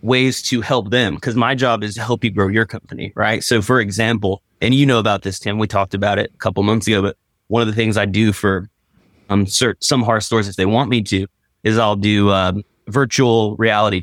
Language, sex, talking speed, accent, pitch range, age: English, male, 235 wpm, American, 100-115 Hz, 30-49